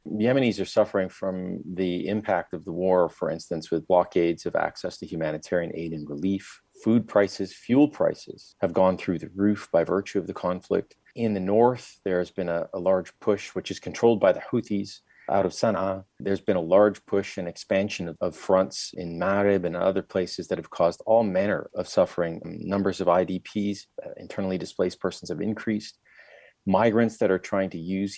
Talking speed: 190 wpm